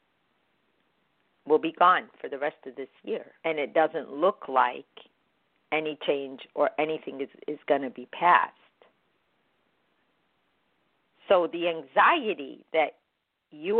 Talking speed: 125 wpm